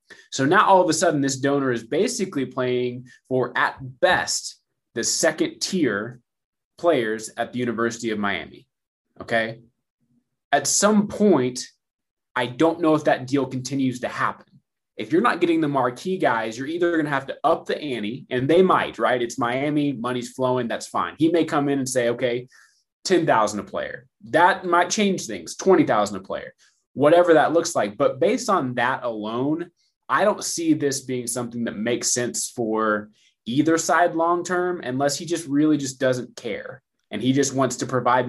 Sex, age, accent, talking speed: male, 20-39, American, 180 wpm